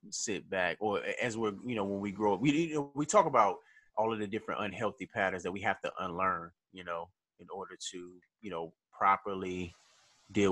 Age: 20-39